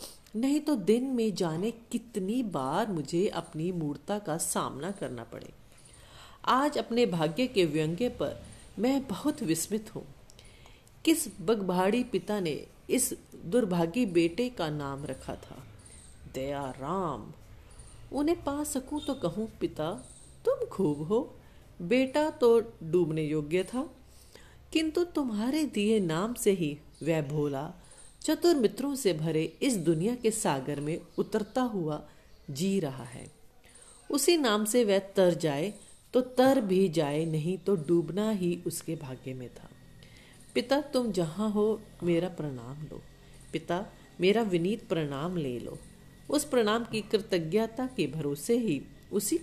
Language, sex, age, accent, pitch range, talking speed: Hindi, female, 40-59, native, 160-240 Hz, 135 wpm